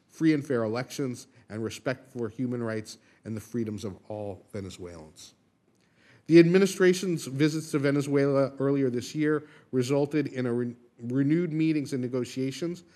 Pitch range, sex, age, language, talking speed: 115-140 Hz, male, 50-69, English, 135 wpm